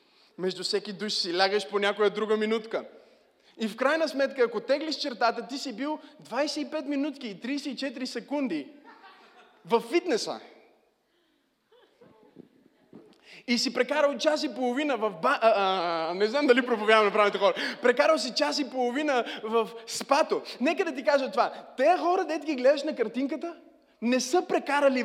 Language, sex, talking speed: Bulgarian, male, 150 wpm